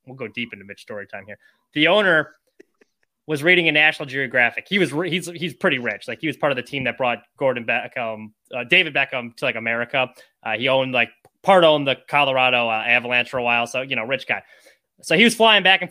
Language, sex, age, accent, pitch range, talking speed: English, male, 20-39, American, 140-195 Hz, 240 wpm